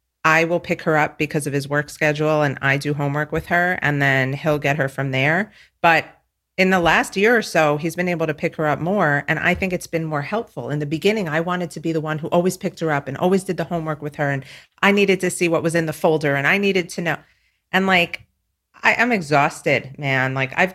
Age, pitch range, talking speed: 40-59, 135-175 Hz, 255 wpm